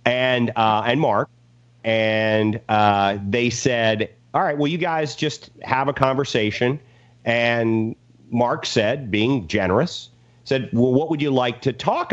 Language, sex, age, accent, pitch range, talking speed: English, male, 40-59, American, 115-150 Hz, 150 wpm